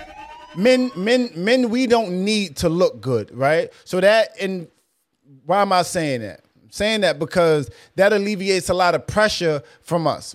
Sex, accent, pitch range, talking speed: male, American, 170-220 Hz, 175 wpm